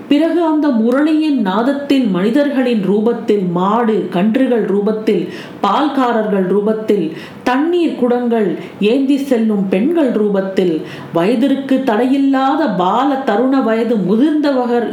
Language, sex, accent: Tamil, female, native